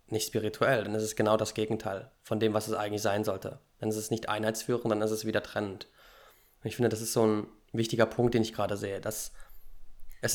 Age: 20-39